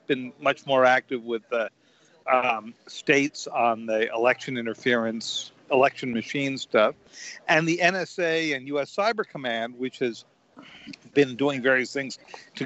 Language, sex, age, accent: English, male, 50-69, American